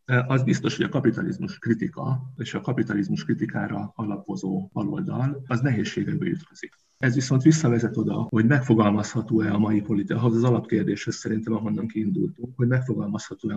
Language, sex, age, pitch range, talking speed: Hungarian, male, 50-69, 110-135 Hz, 140 wpm